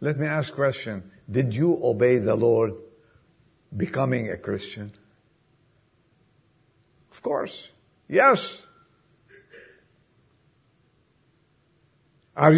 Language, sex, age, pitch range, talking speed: English, male, 60-79, 125-170 Hz, 80 wpm